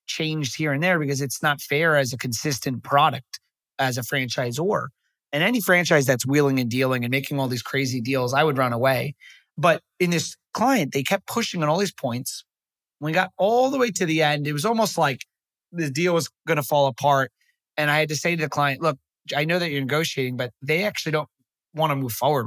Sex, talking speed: male, 225 wpm